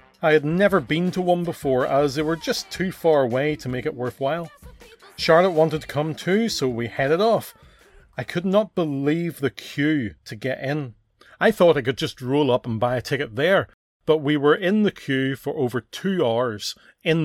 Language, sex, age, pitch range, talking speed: English, male, 30-49, 125-160 Hz, 205 wpm